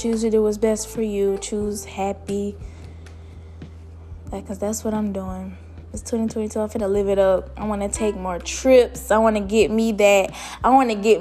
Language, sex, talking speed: English, female, 210 wpm